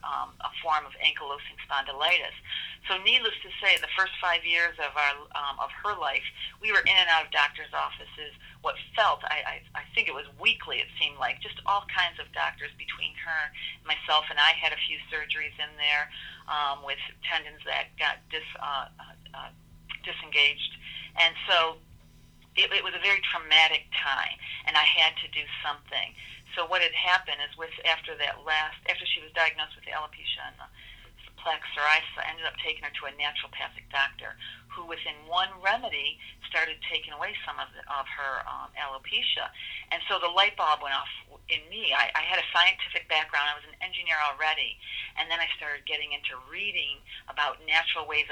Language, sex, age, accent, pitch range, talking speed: English, female, 40-59, American, 145-175 Hz, 190 wpm